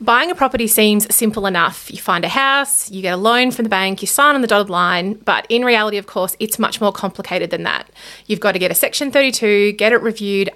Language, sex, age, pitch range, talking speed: English, female, 30-49, 195-240 Hz, 250 wpm